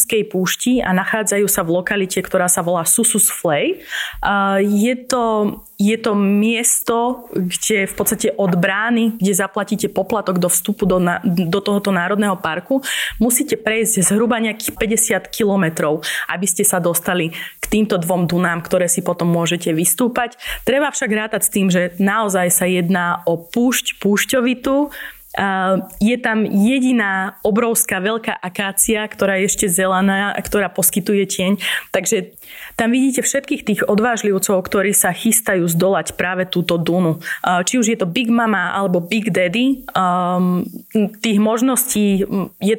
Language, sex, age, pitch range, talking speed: Slovak, female, 20-39, 185-225 Hz, 140 wpm